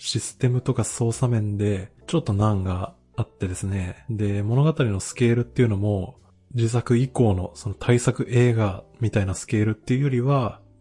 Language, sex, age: Japanese, male, 20-39